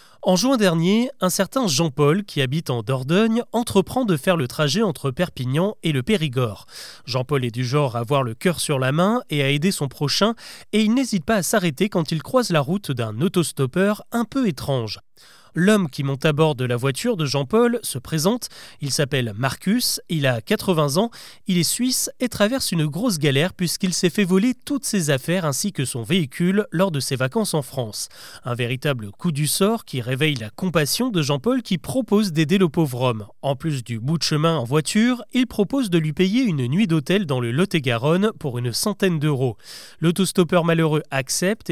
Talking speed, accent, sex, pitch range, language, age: 200 wpm, French, male, 140-205 Hz, French, 30-49